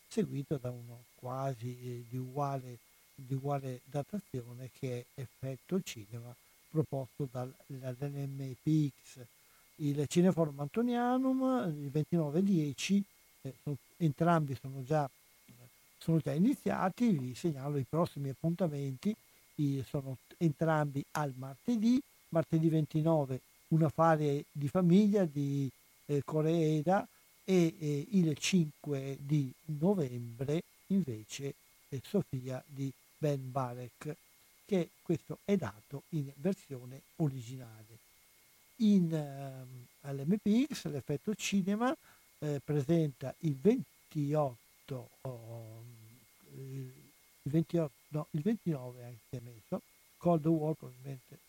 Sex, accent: male, native